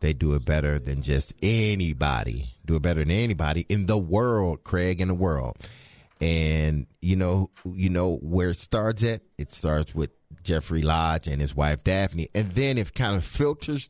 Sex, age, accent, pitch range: male, 30-49, American, 80-110 Hz